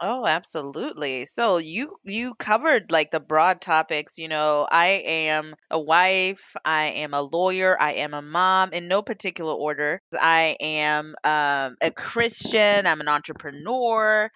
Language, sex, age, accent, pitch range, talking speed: English, female, 30-49, American, 145-185 Hz, 150 wpm